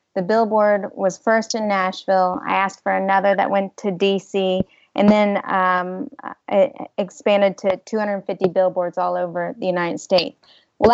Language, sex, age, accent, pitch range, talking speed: English, female, 30-49, American, 185-225 Hz, 155 wpm